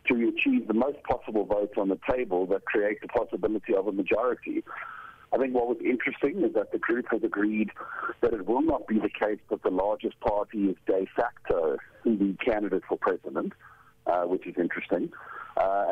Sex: male